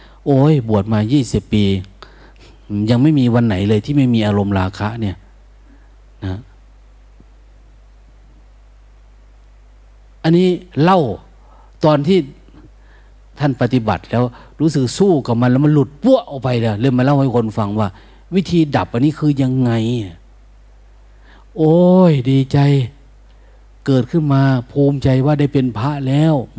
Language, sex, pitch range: Thai, male, 105-140 Hz